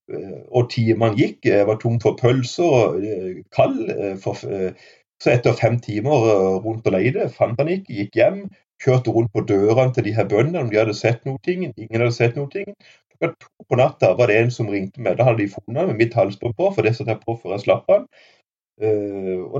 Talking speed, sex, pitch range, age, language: 205 wpm, male, 100-125 Hz, 30-49, English